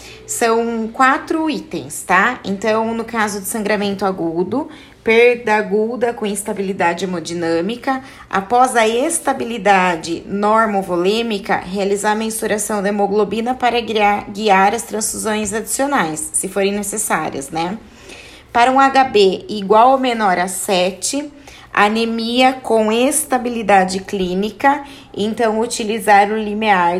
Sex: female